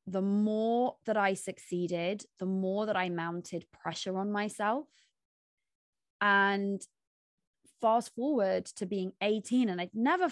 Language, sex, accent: English, female, British